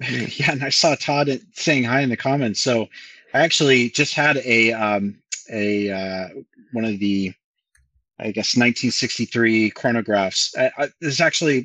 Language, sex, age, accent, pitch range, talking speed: English, male, 30-49, American, 100-120 Hz, 160 wpm